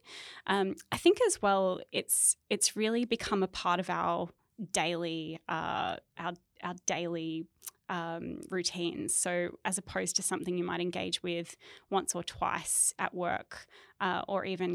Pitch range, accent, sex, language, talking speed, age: 175-190 Hz, Australian, female, English, 150 wpm, 20-39